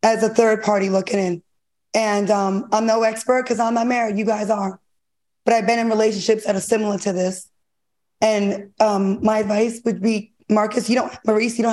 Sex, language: female, English